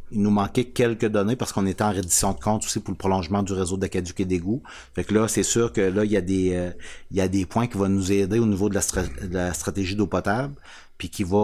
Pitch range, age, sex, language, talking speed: 90-105 Hz, 30-49, male, French, 290 wpm